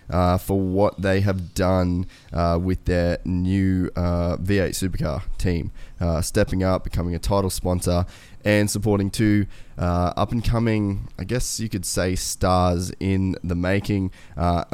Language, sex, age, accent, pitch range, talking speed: English, male, 20-39, Australian, 90-105 Hz, 155 wpm